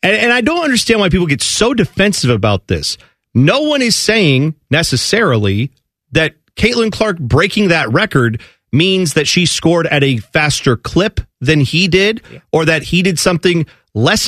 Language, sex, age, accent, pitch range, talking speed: English, male, 40-59, American, 125-190 Hz, 165 wpm